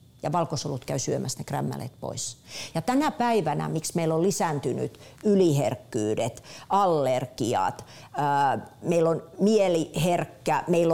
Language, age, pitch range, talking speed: Finnish, 50-69, 145-185 Hz, 105 wpm